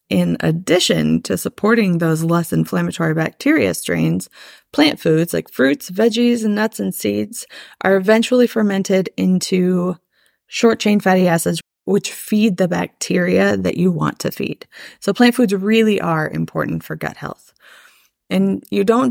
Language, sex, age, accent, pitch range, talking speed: English, female, 20-39, American, 160-205 Hz, 145 wpm